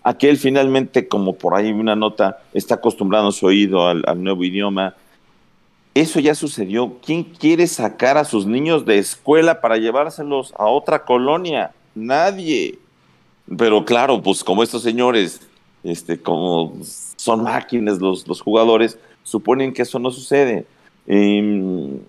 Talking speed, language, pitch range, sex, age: 140 wpm, Spanish, 95-125 Hz, male, 50-69